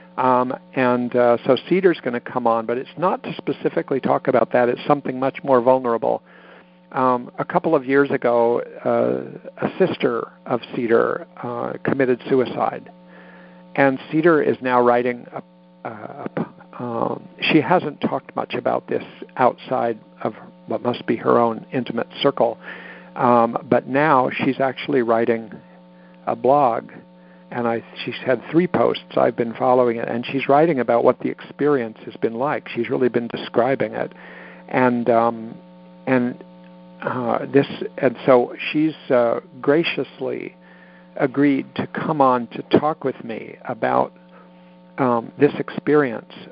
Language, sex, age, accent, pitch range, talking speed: English, male, 50-69, American, 105-135 Hz, 150 wpm